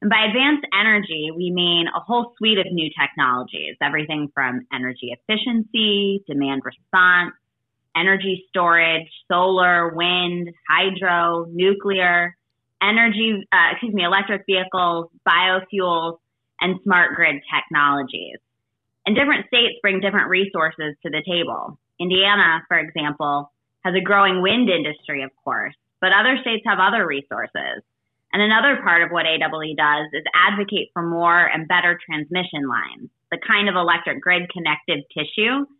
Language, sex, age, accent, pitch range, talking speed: English, female, 20-39, American, 155-205 Hz, 135 wpm